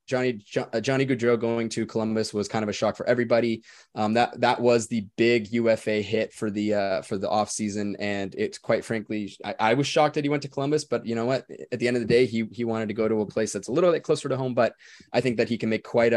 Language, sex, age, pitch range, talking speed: English, male, 20-39, 105-120 Hz, 270 wpm